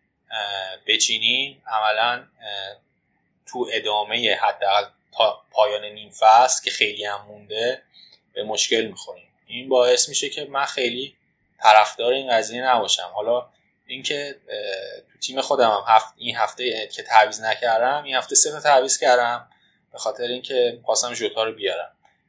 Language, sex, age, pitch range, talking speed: Persian, male, 20-39, 110-155 Hz, 130 wpm